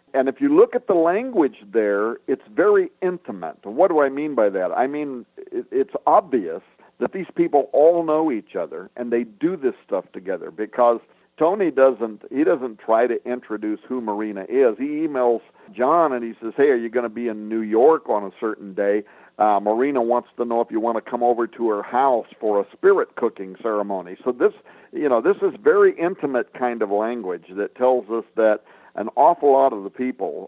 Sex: male